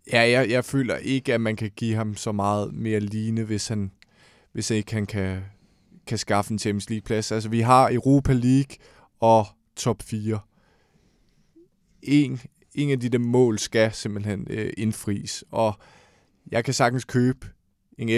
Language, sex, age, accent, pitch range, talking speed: Danish, male, 20-39, native, 105-130 Hz, 160 wpm